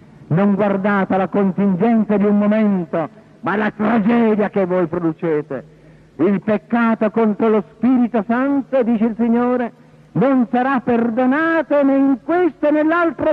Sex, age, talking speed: male, 50-69, 135 wpm